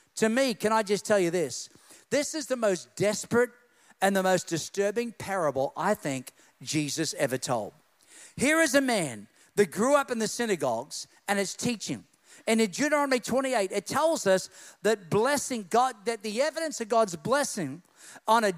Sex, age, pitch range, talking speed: male, 50-69, 185-270 Hz, 175 wpm